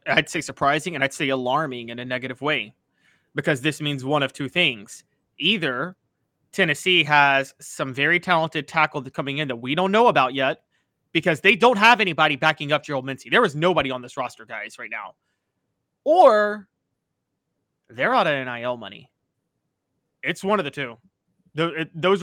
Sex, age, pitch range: male, 30-49, 140-200 Hz